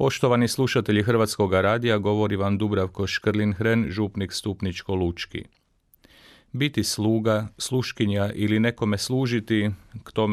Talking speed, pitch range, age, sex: 105 wpm, 95-115 Hz, 40-59, male